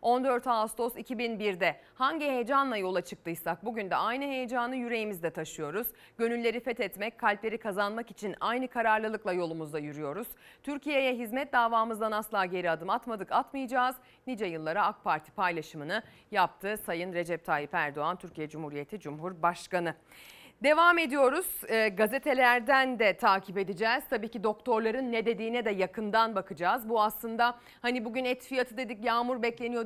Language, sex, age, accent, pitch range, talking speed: Turkish, female, 30-49, native, 205-255 Hz, 135 wpm